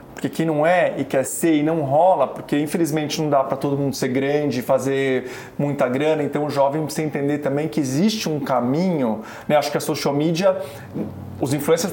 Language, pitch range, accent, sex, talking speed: Portuguese, 160-230 Hz, Brazilian, male, 205 wpm